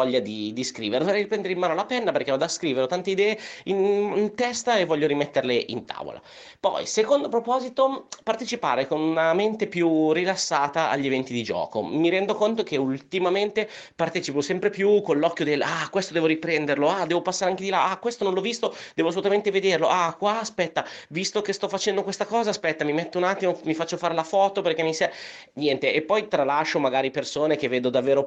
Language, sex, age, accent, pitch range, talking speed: Italian, male, 30-49, native, 140-200 Hz, 210 wpm